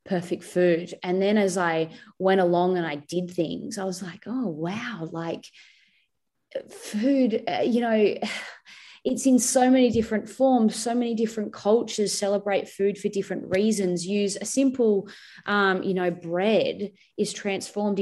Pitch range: 185-240 Hz